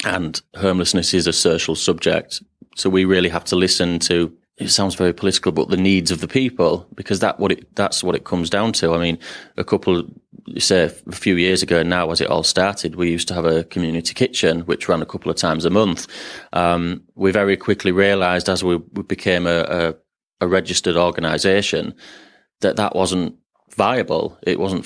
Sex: male